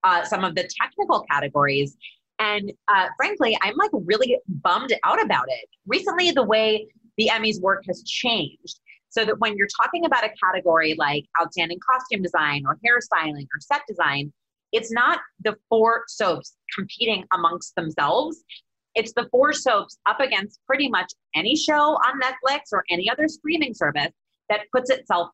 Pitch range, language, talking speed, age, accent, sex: 170-245 Hz, English, 165 wpm, 30-49, American, female